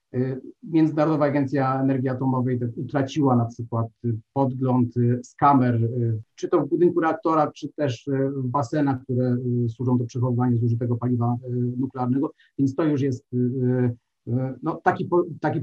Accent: native